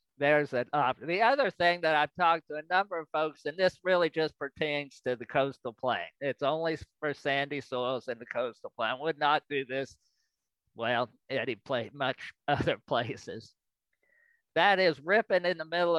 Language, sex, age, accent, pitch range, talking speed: English, male, 50-69, American, 140-180 Hz, 185 wpm